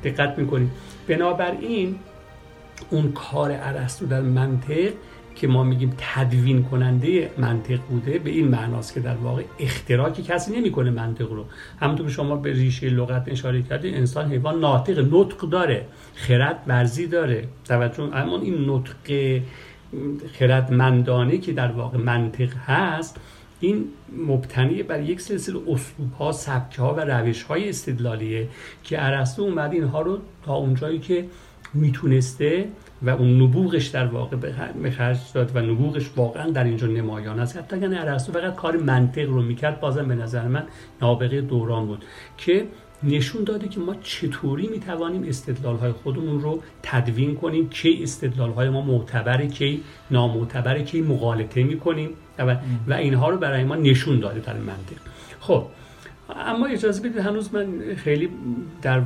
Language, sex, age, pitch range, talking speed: Persian, male, 50-69, 125-160 Hz, 145 wpm